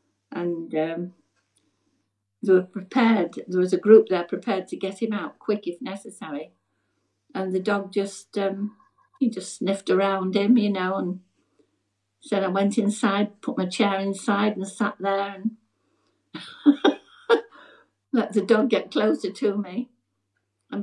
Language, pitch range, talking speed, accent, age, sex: English, 185-225 Hz, 145 wpm, British, 60-79, female